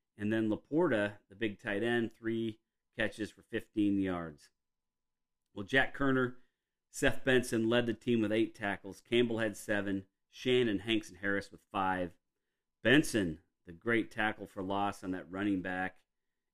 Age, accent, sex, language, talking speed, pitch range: 40-59, American, male, English, 150 wpm, 95-120 Hz